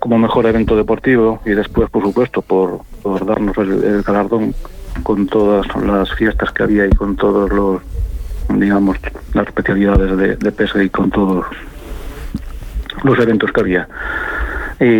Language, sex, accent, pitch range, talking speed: Spanish, male, Spanish, 100-110 Hz, 150 wpm